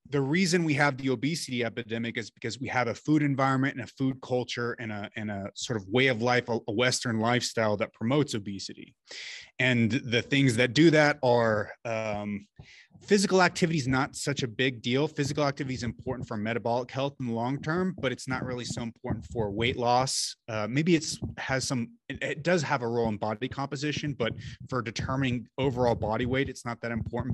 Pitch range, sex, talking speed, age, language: 110-130 Hz, male, 200 wpm, 30-49, English